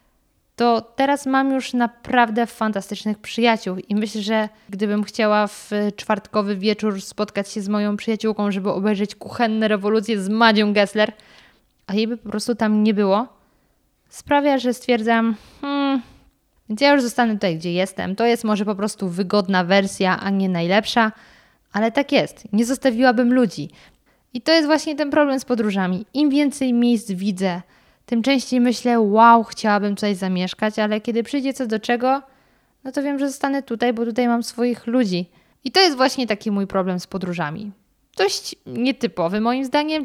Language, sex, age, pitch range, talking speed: Polish, female, 20-39, 205-245 Hz, 165 wpm